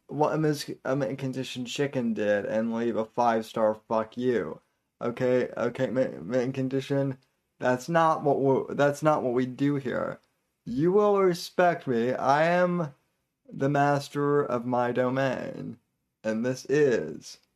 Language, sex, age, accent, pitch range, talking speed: English, male, 20-39, American, 115-145 Hz, 145 wpm